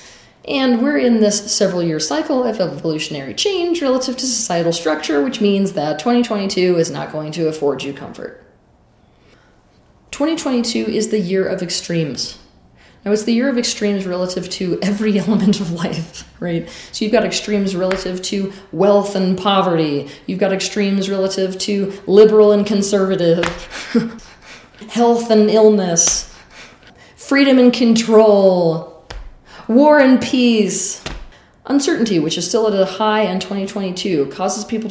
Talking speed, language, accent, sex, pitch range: 140 wpm, English, American, female, 170-220 Hz